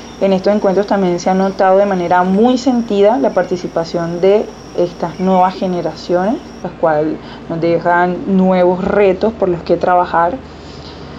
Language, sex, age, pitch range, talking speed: Spanish, female, 20-39, 170-195 Hz, 145 wpm